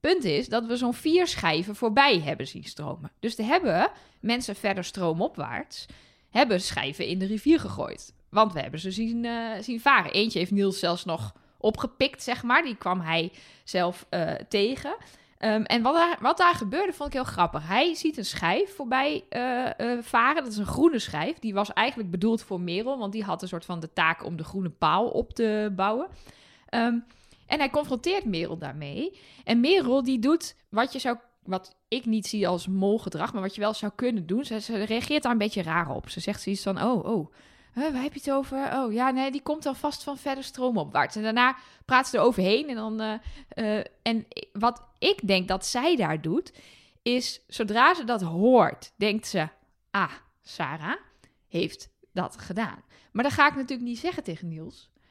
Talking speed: 200 wpm